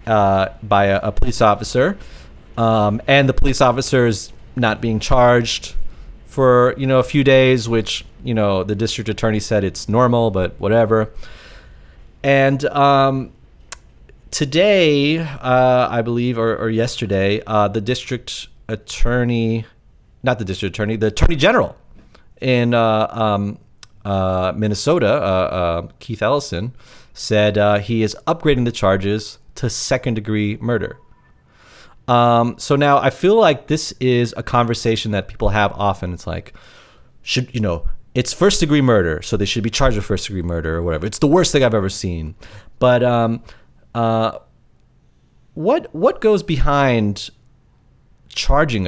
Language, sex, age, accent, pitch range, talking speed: English, male, 30-49, American, 100-125 Hz, 150 wpm